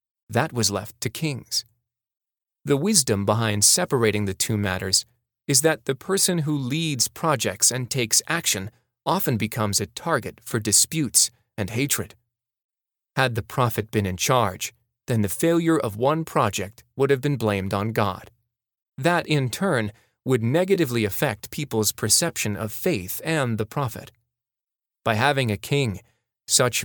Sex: male